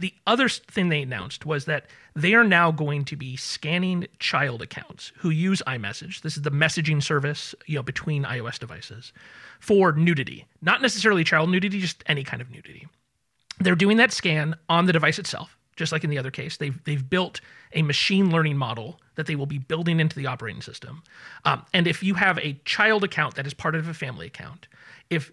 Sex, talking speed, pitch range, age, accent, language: male, 205 wpm, 140-180 Hz, 30-49, American, English